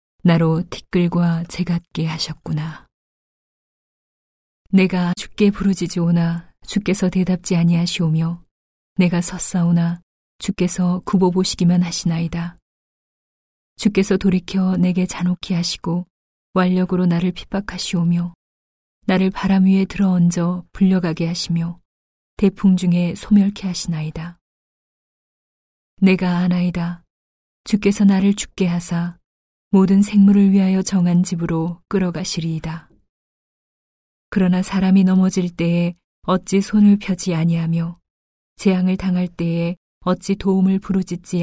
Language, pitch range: Korean, 170-190 Hz